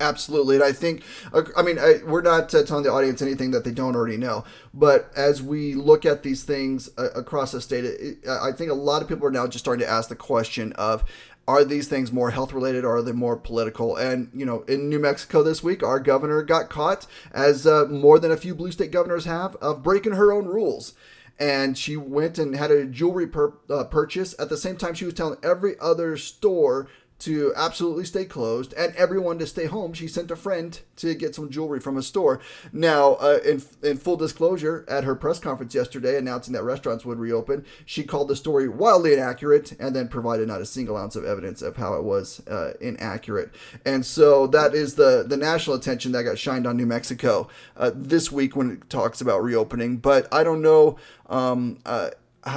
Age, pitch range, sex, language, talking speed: 30-49, 130-165 Hz, male, English, 215 wpm